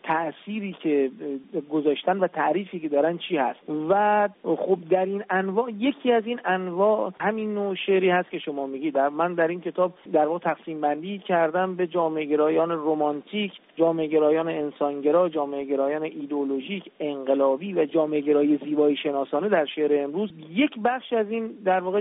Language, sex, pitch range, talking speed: Persian, male, 150-190 Hz, 160 wpm